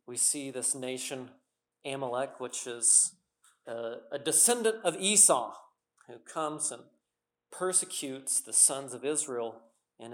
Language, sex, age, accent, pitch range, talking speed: English, male, 40-59, American, 120-150 Hz, 120 wpm